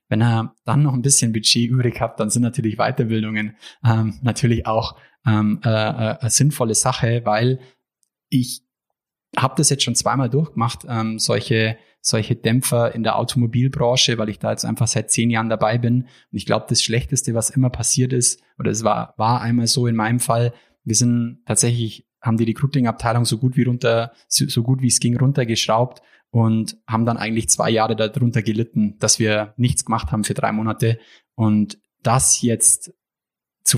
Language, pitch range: German, 110-125 Hz